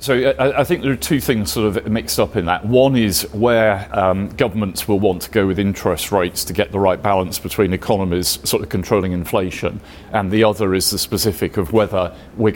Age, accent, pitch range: 40-59, British, 95-115 Hz